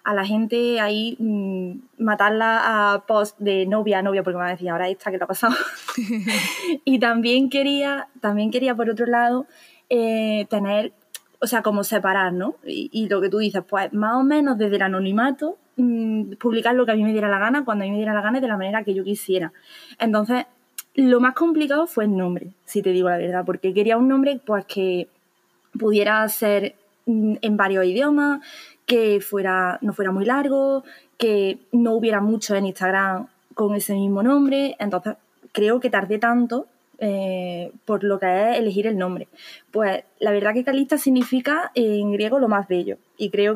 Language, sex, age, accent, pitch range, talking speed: Spanish, female, 20-39, Spanish, 200-250 Hz, 195 wpm